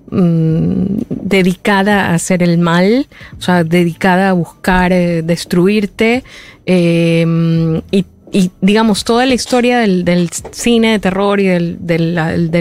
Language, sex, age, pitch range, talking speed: Spanish, female, 20-39, 170-215 Hz, 125 wpm